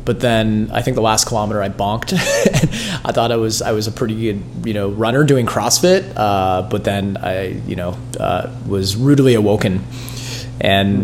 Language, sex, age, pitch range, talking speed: English, male, 30-49, 110-125 Hz, 185 wpm